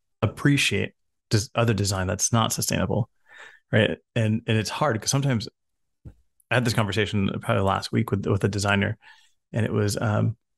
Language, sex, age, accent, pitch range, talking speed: English, male, 30-49, American, 100-120 Hz, 160 wpm